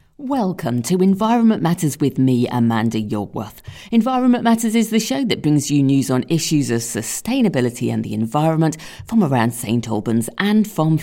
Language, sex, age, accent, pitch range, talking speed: English, female, 50-69, British, 120-195 Hz, 165 wpm